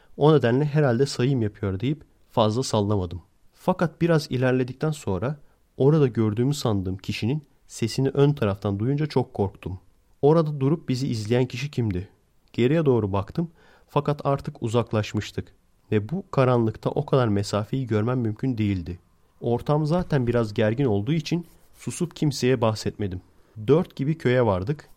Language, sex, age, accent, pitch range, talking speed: Turkish, male, 40-59, native, 105-135 Hz, 135 wpm